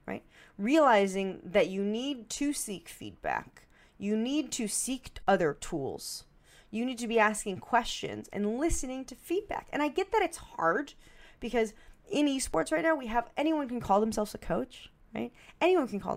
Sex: female